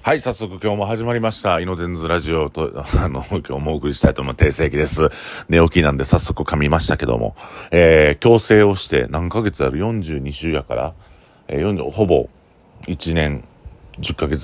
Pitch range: 70-90 Hz